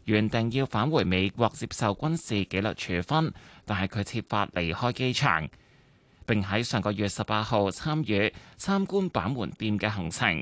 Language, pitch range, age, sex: Chinese, 95-120 Hz, 20-39, male